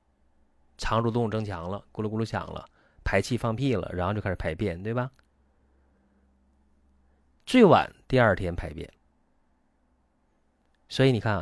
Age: 30-49